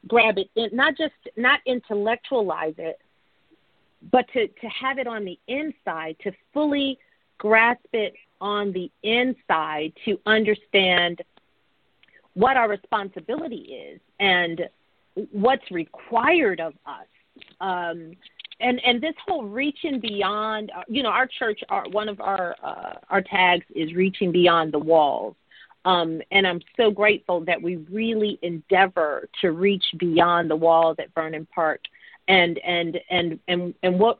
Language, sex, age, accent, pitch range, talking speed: English, female, 40-59, American, 175-230 Hz, 140 wpm